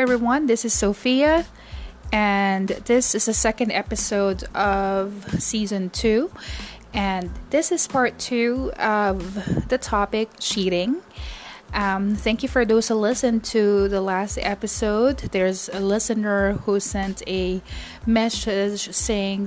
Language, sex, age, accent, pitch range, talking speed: English, female, 20-39, Filipino, 195-225 Hz, 125 wpm